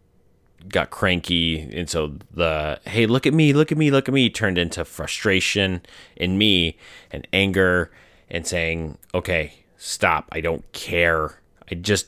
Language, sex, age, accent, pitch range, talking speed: English, male, 30-49, American, 85-110 Hz, 155 wpm